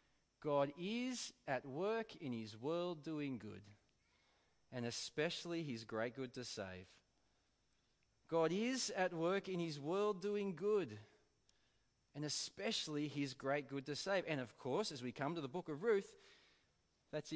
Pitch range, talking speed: 120-180 Hz, 150 wpm